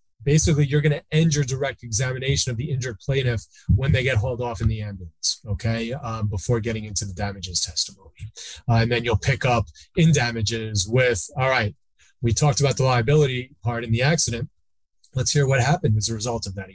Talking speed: 205 wpm